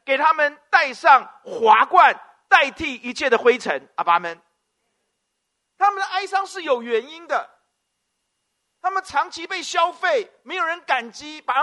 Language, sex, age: Chinese, male, 50-69